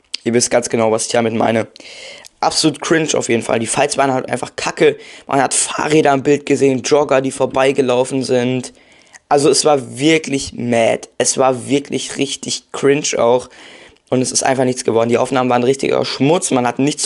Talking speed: 190 wpm